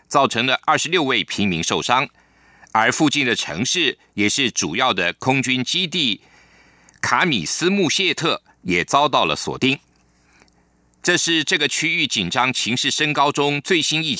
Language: German